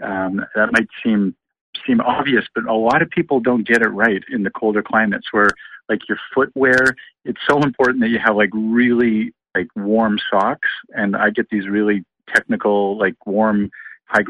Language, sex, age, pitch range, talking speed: English, male, 50-69, 105-125 Hz, 180 wpm